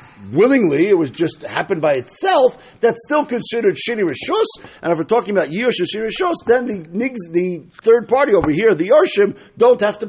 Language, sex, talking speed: English, male, 185 wpm